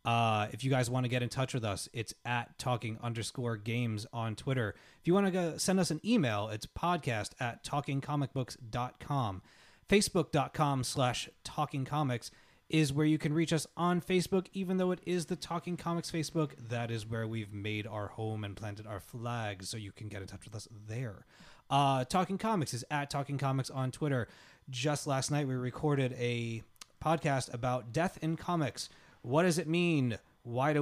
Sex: male